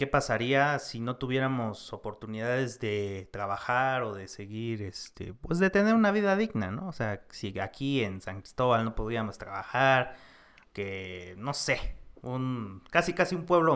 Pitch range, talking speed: 105-135 Hz, 160 wpm